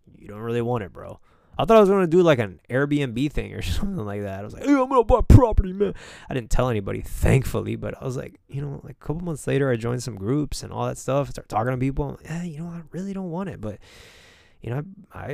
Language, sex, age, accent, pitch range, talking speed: English, male, 20-39, American, 100-145 Hz, 285 wpm